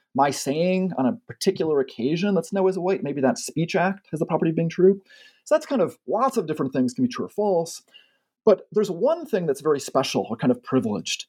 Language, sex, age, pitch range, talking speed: English, male, 30-49, 130-195 Hz, 235 wpm